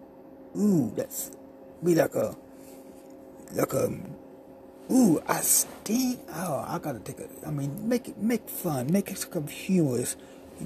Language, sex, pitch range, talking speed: English, male, 150-195 Hz, 160 wpm